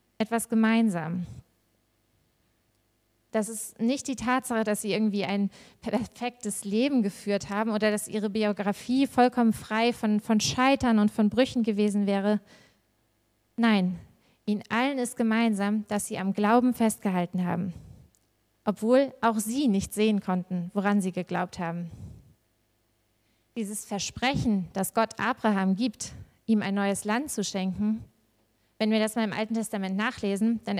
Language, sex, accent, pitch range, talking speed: German, female, German, 180-225 Hz, 140 wpm